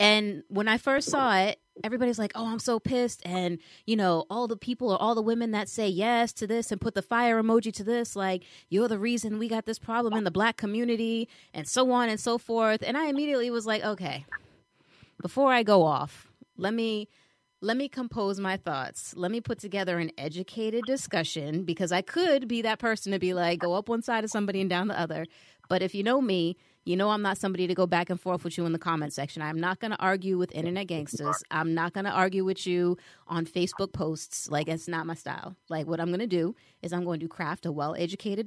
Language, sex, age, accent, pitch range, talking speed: English, female, 30-49, American, 170-225 Hz, 235 wpm